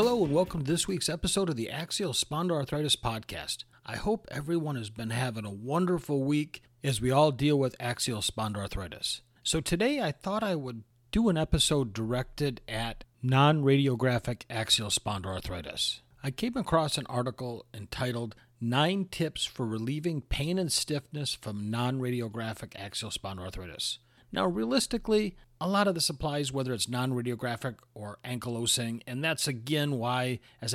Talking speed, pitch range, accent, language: 150 wpm, 115-145 Hz, American, English